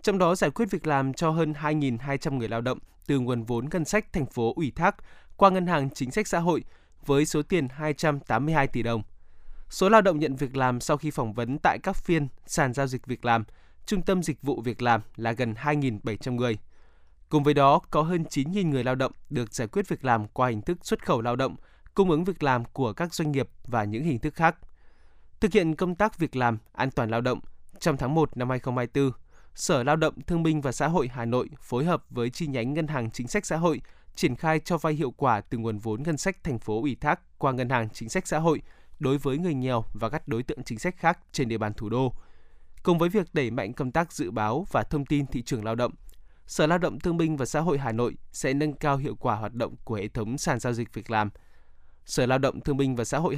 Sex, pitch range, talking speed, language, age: male, 120-160 Hz, 245 wpm, Vietnamese, 20-39